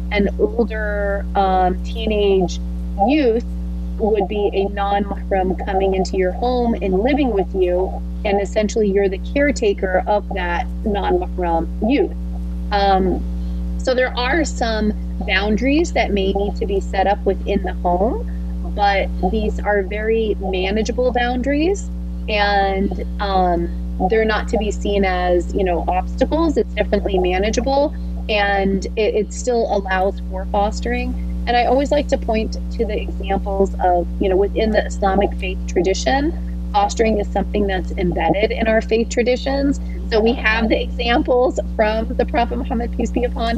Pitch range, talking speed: 170-215 Hz, 145 wpm